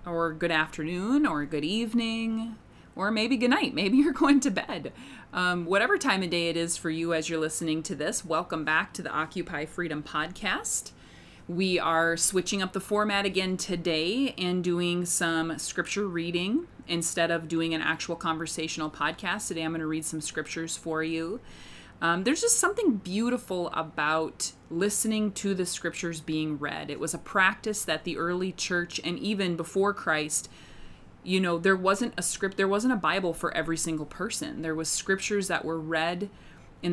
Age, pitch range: 30-49, 160-205 Hz